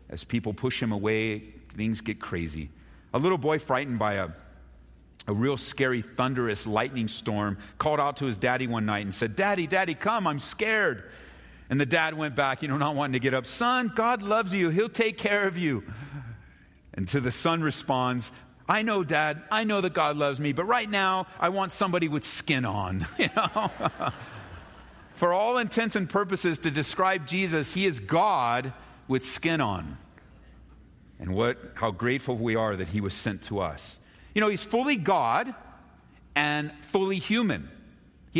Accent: American